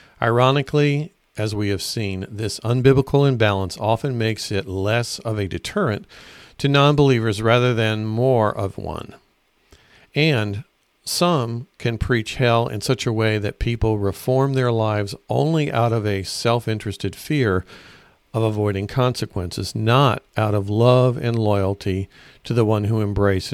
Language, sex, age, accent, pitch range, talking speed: English, male, 50-69, American, 105-130 Hz, 145 wpm